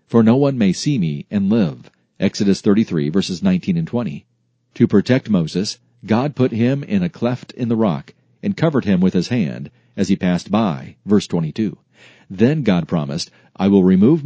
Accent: American